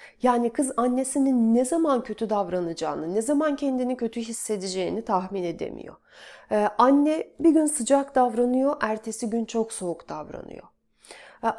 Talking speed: 135 wpm